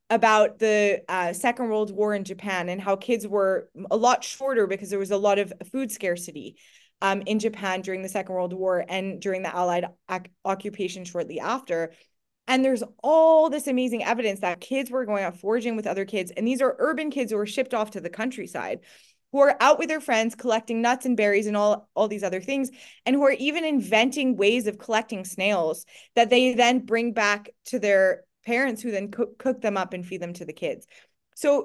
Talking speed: 210 wpm